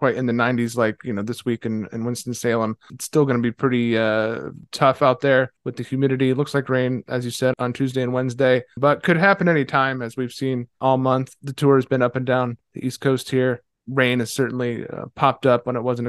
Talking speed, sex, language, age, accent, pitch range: 245 wpm, male, English, 20-39, American, 120-150 Hz